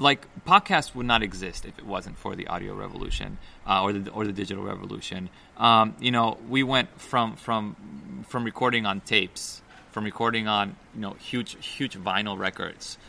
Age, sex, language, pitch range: 30-49, male, English, 100-115 Hz